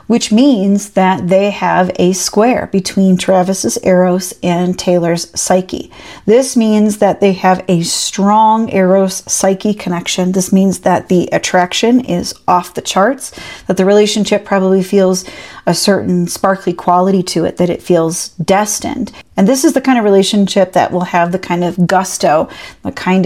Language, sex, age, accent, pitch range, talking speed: English, female, 40-59, American, 175-200 Hz, 160 wpm